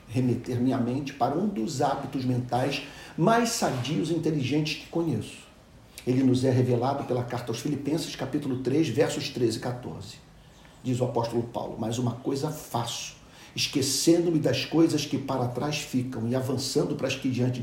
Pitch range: 125-175 Hz